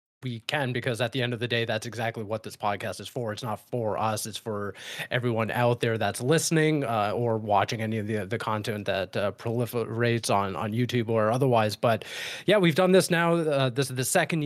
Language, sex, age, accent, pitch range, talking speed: English, male, 30-49, American, 115-150 Hz, 225 wpm